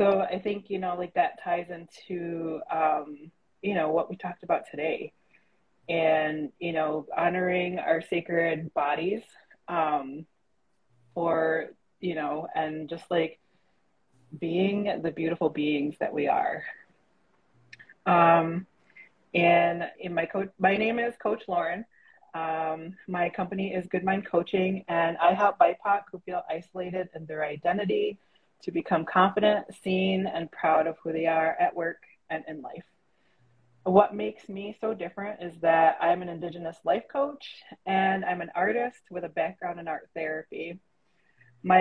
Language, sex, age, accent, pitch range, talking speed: English, female, 20-39, American, 160-190 Hz, 150 wpm